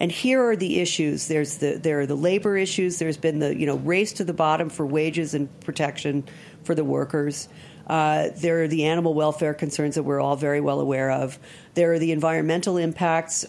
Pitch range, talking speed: 160-200 Hz, 210 wpm